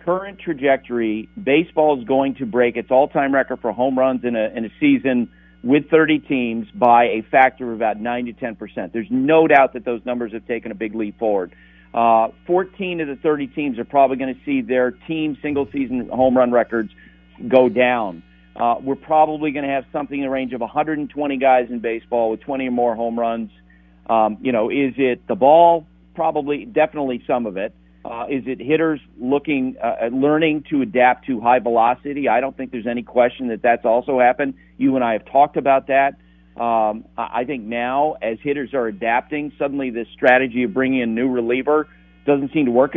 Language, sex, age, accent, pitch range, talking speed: English, male, 50-69, American, 115-145 Hz, 195 wpm